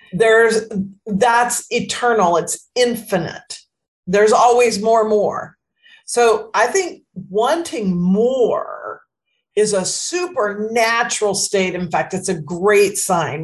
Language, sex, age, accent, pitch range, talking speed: English, female, 40-59, American, 175-220 Hz, 115 wpm